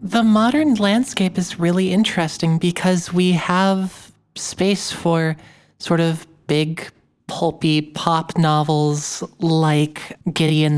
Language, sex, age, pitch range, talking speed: English, male, 30-49, 150-180 Hz, 105 wpm